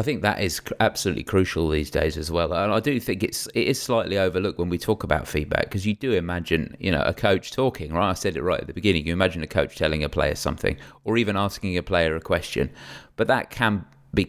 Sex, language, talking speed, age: male, English, 250 wpm, 30-49